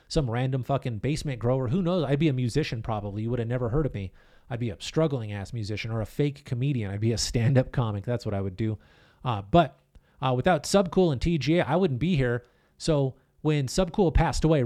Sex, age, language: male, 30-49, English